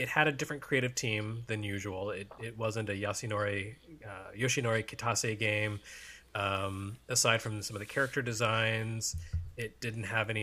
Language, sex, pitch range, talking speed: English, male, 100-120 Hz, 165 wpm